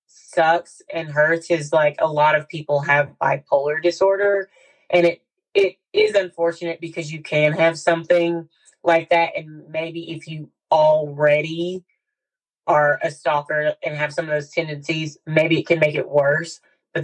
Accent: American